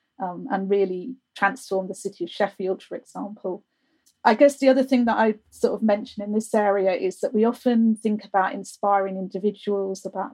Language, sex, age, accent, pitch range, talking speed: English, female, 30-49, British, 195-235 Hz, 185 wpm